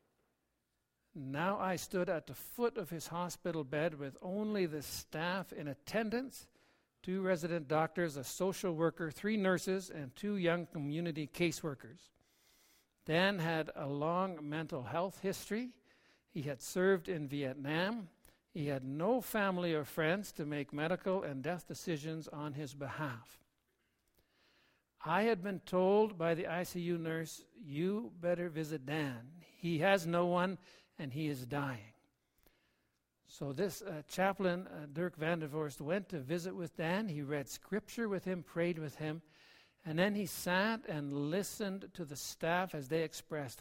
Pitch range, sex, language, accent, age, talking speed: 150-185 Hz, male, English, American, 60-79, 150 wpm